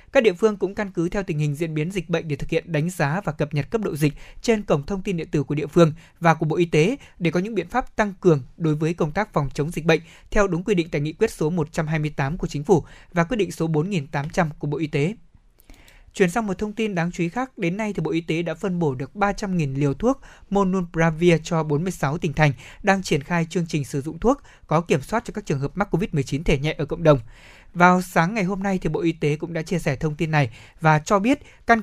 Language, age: Vietnamese, 20-39